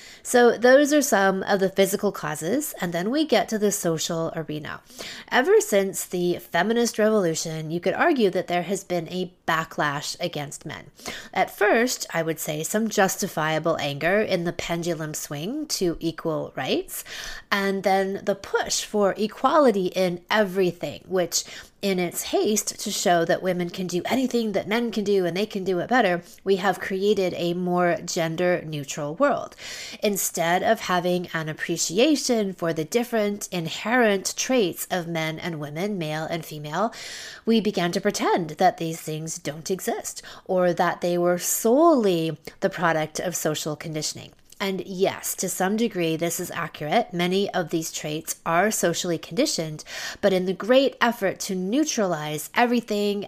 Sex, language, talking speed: female, English, 160 wpm